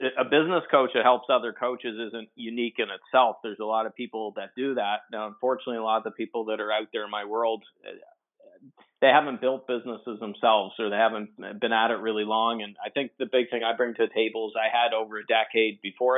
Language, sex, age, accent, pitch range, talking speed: English, male, 40-59, American, 110-125 Hz, 235 wpm